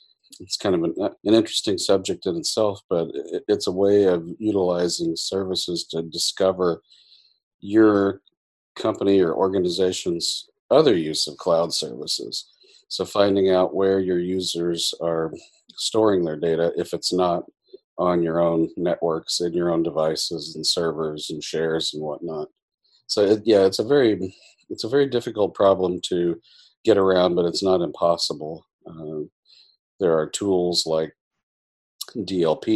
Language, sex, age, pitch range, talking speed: English, male, 40-59, 85-100 Hz, 145 wpm